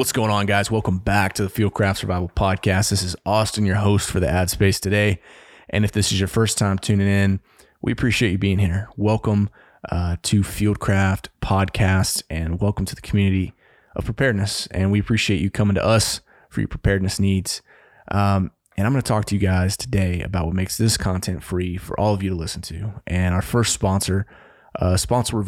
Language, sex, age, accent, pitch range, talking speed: English, male, 20-39, American, 95-105 Hz, 210 wpm